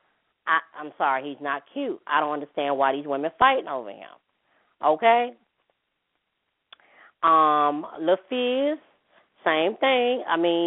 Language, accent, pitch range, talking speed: English, American, 155-215 Hz, 125 wpm